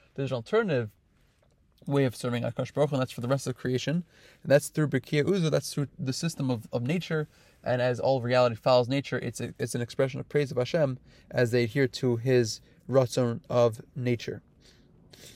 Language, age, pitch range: English, 20-39, 125-145 Hz